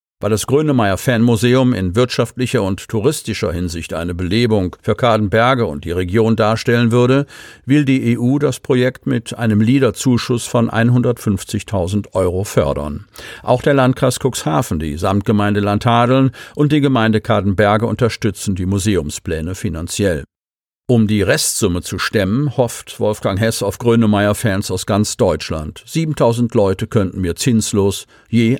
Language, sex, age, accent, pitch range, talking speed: German, male, 50-69, German, 100-125 Hz, 135 wpm